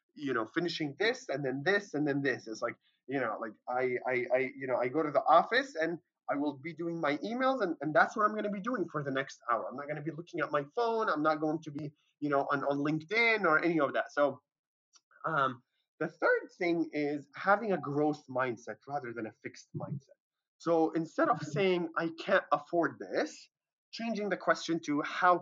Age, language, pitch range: 20-39, English, 140-180 Hz